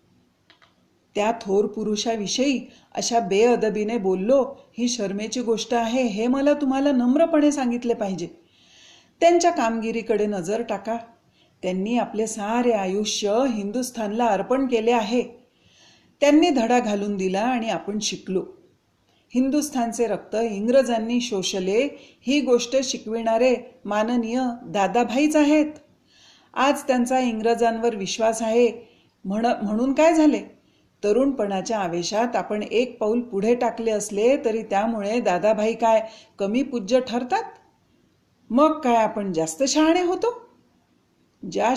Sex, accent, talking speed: female, native, 110 wpm